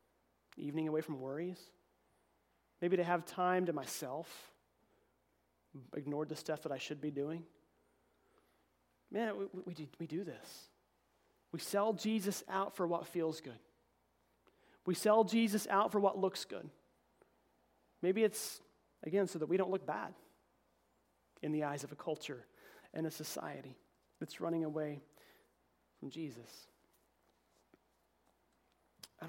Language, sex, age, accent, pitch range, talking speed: English, male, 30-49, American, 150-180 Hz, 130 wpm